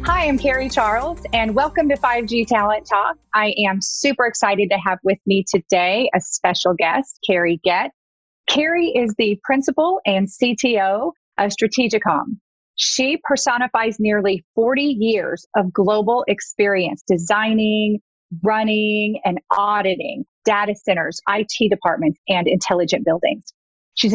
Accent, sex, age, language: American, female, 30-49, English